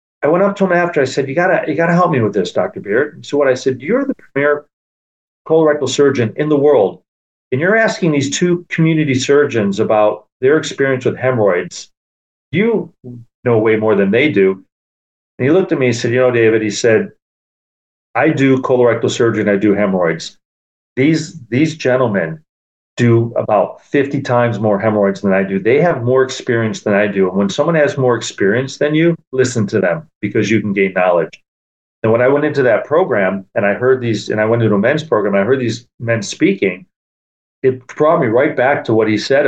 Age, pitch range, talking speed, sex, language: 40-59, 100-140 Hz, 210 wpm, male, English